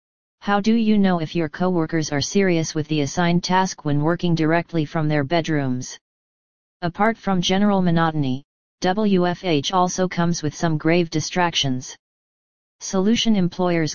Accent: American